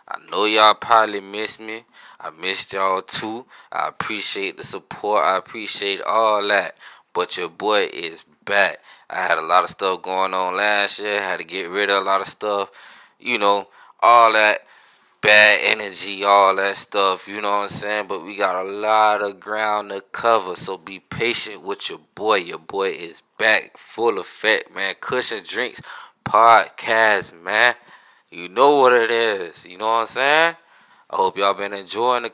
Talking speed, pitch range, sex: 180 wpm, 100-115 Hz, male